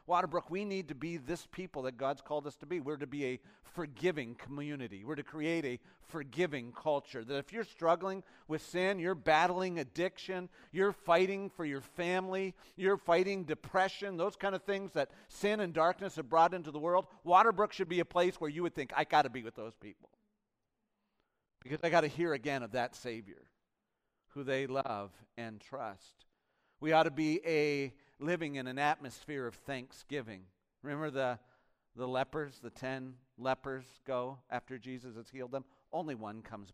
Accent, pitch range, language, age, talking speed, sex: American, 130-175 Hz, English, 40-59, 185 wpm, male